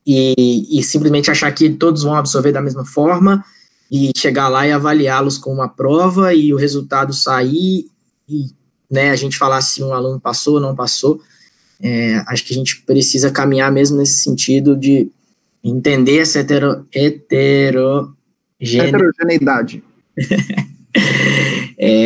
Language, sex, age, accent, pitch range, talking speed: Portuguese, male, 20-39, Brazilian, 130-150 Hz, 140 wpm